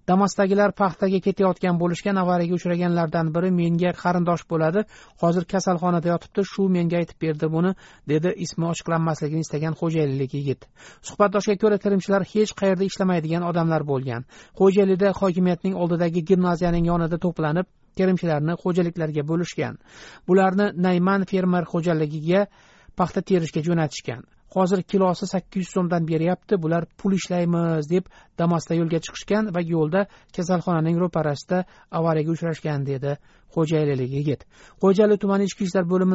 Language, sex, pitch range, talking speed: English, male, 170-195 Hz, 130 wpm